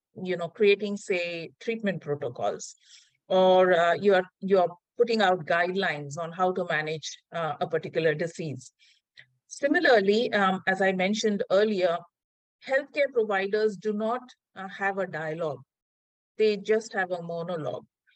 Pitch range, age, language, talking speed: 175-215 Hz, 50-69, English, 140 wpm